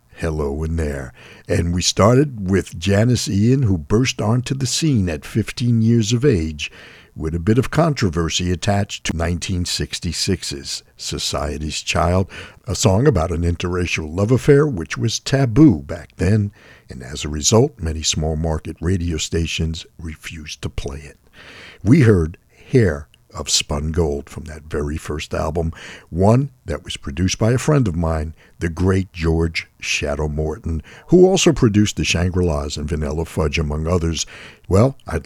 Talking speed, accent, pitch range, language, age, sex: 155 wpm, American, 80-120 Hz, English, 60-79, male